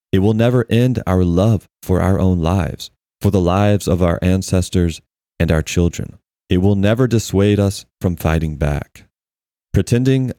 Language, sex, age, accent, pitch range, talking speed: English, male, 30-49, American, 90-105 Hz, 160 wpm